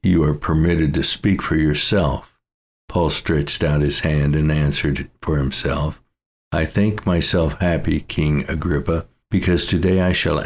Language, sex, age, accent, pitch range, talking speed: English, male, 60-79, American, 75-90 Hz, 150 wpm